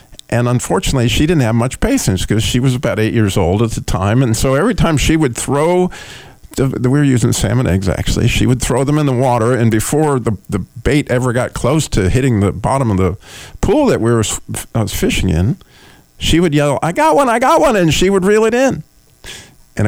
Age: 50-69